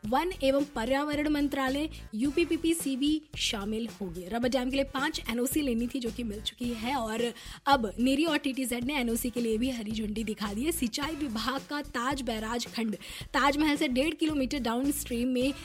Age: 20-39